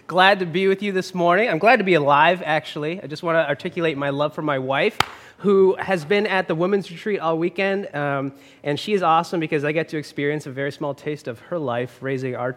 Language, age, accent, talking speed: English, 20-39, American, 245 wpm